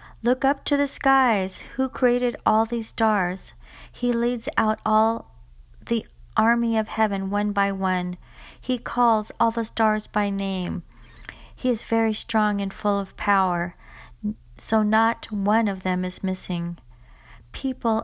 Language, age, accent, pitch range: English, 40-59, American, 185-230 Hz